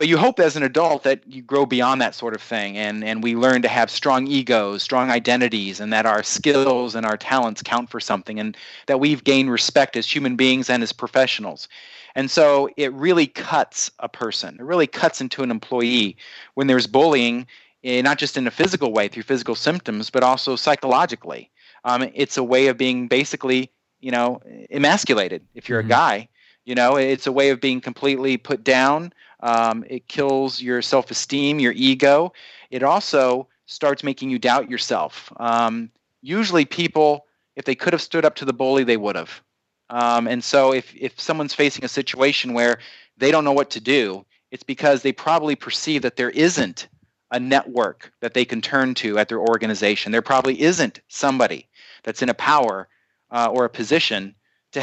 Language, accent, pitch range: English, American, 120-140 Hz